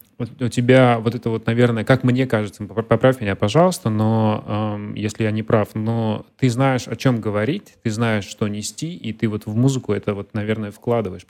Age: 30-49